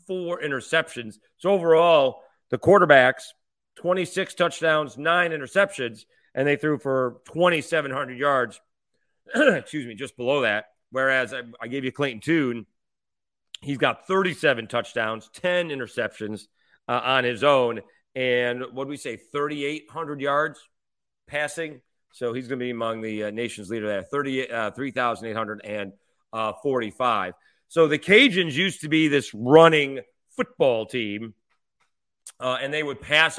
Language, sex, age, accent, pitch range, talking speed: English, male, 40-59, American, 120-155 Hz, 145 wpm